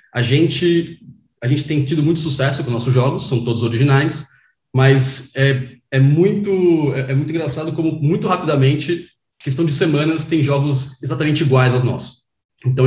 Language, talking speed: English, 160 wpm